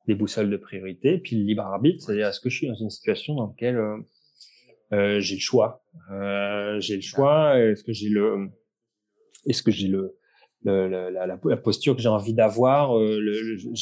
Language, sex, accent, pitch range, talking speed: French, male, French, 105-140 Hz, 205 wpm